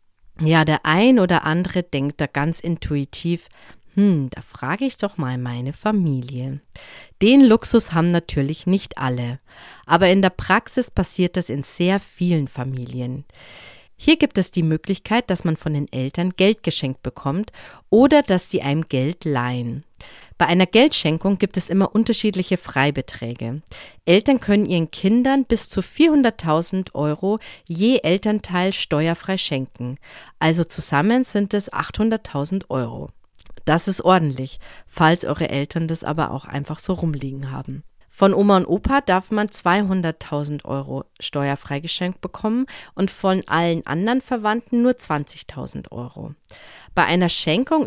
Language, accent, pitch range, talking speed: German, German, 140-195 Hz, 140 wpm